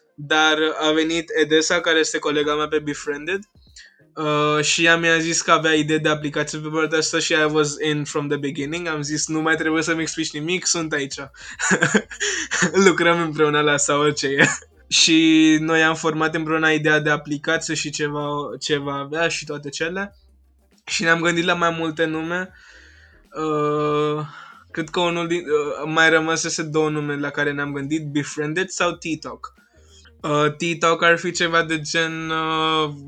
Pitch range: 150-165 Hz